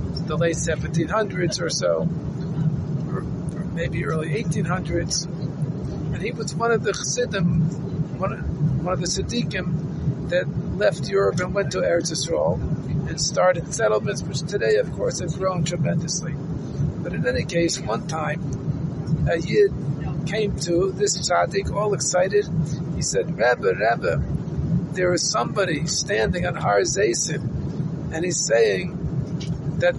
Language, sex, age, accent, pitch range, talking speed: English, male, 50-69, American, 155-175 Hz, 135 wpm